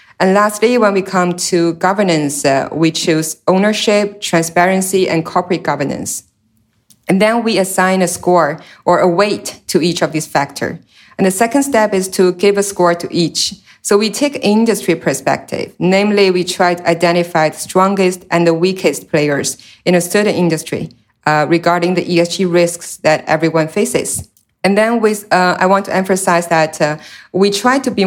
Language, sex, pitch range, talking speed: English, female, 160-190 Hz, 175 wpm